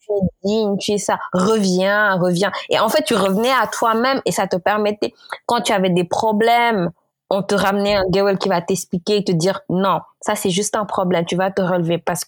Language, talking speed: English, 225 wpm